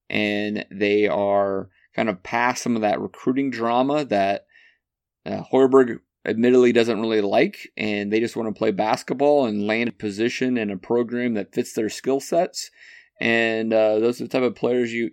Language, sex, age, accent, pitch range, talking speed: English, male, 30-49, American, 105-130 Hz, 185 wpm